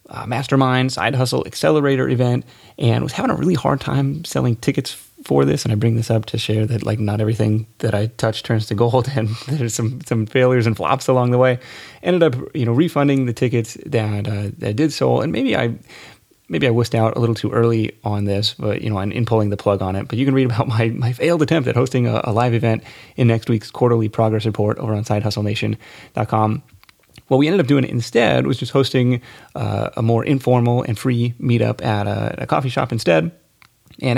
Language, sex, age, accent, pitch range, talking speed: English, male, 30-49, American, 105-130 Hz, 230 wpm